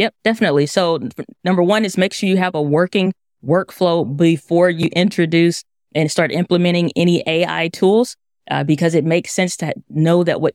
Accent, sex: American, female